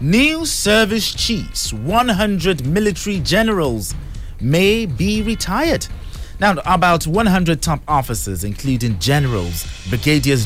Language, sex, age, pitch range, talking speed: English, male, 30-49, 115-165 Hz, 100 wpm